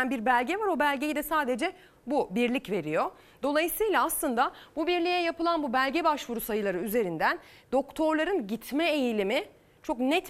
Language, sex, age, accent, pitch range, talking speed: Turkish, female, 30-49, native, 225-330 Hz, 145 wpm